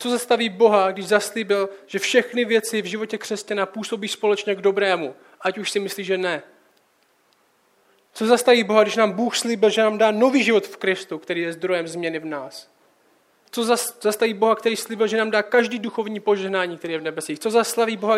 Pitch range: 200-245 Hz